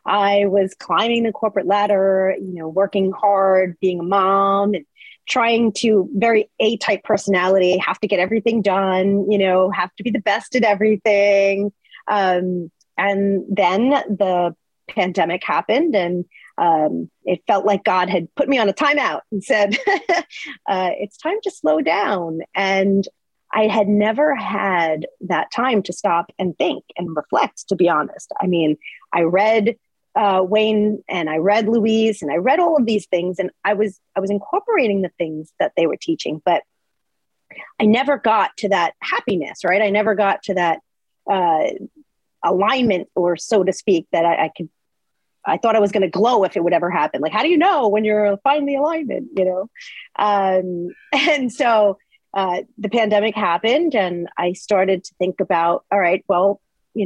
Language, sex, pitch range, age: English, female, 185-225 Hz, 30-49